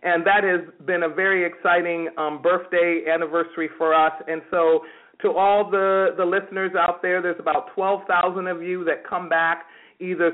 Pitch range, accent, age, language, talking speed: 165-200 Hz, American, 40-59, English, 175 wpm